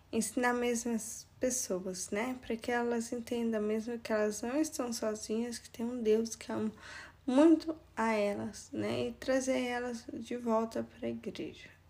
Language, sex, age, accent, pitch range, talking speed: Portuguese, female, 10-29, Brazilian, 210-250 Hz, 165 wpm